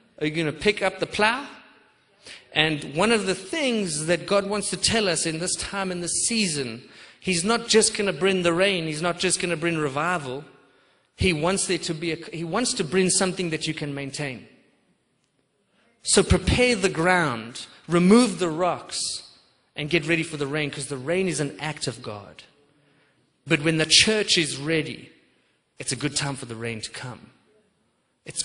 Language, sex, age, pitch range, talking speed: English, male, 30-49, 135-175 Hz, 195 wpm